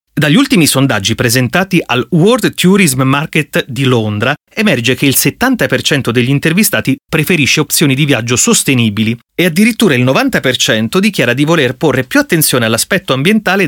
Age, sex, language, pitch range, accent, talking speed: 30-49, male, Italian, 125-175 Hz, native, 145 wpm